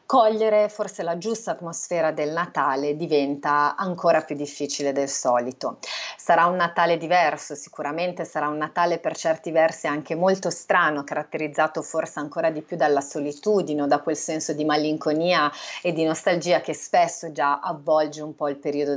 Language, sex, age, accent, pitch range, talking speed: Italian, female, 30-49, native, 150-195 Hz, 160 wpm